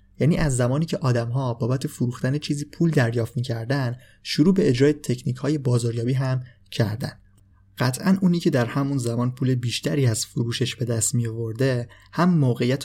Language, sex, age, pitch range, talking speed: Persian, male, 20-39, 115-135 Hz, 165 wpm